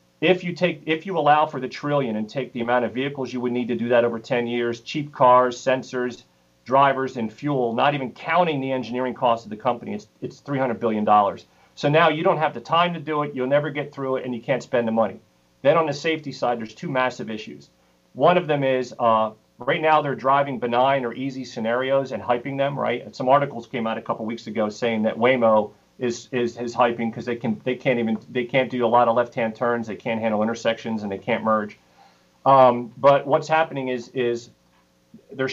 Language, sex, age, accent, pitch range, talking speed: English, male, 40-59, American, 115-140 Hz, 230 wpm